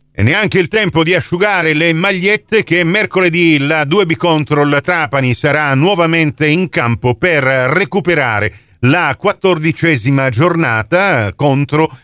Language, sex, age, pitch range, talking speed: Italian, male, 50-69, 120-175 Hz, 120 wpm